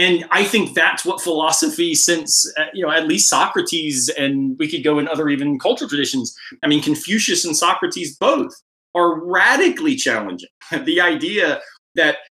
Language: English